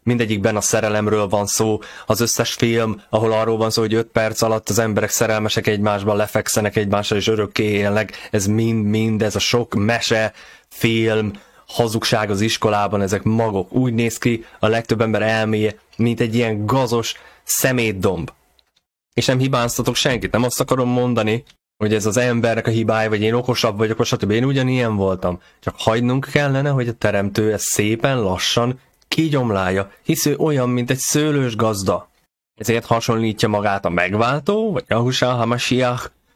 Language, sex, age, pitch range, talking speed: Hungarian, male, 20-39, 105-120 Hz, 160 wpm